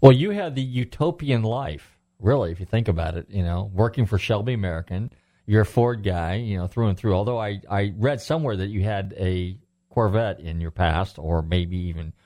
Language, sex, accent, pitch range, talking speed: English, male, American, 90-115 Hz, 210 wpm